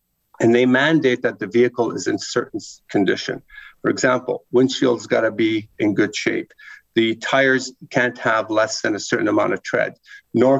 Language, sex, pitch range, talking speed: English, male, 125-160 Hz, 175 wpm